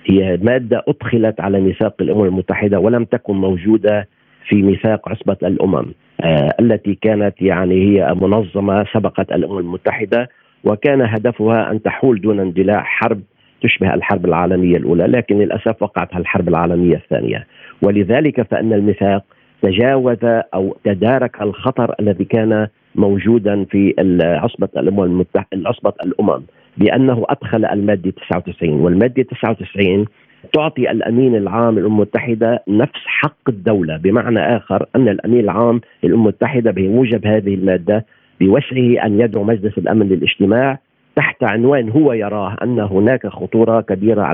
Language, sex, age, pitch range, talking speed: Arabic, male, 50-69, 100-120 Hz, 125 wpm